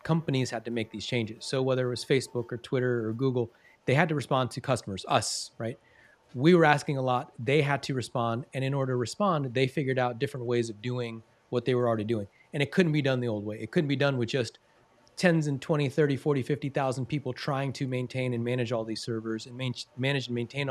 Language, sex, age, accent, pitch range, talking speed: English, male, 30-49, American, 115-145 Hz, 240 wpm